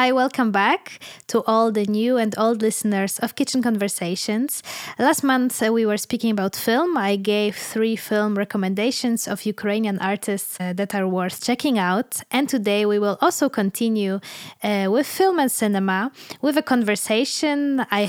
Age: 20-39